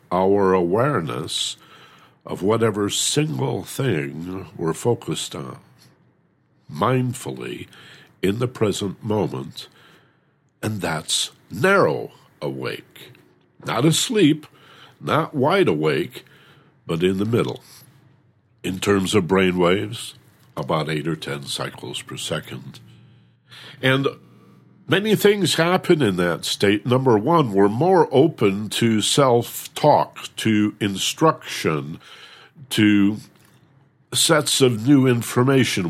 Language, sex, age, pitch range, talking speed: English, male, 60-79, 95-135 Hz, 100 wpm